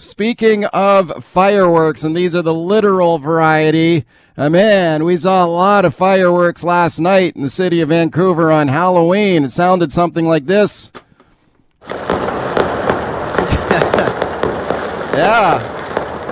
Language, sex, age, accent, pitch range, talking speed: English, male, 40-59, American, 165-200 Hz, 115 wpm